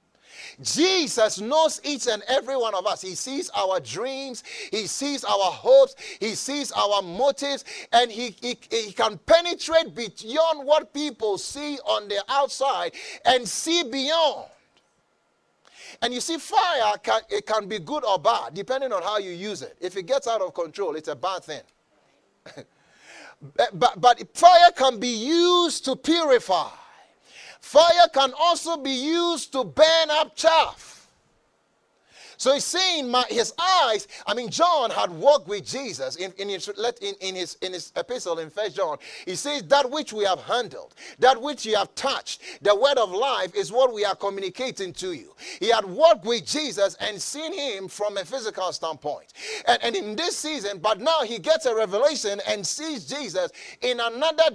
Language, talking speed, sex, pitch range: English, 165 wpm, male, 210-320 Hz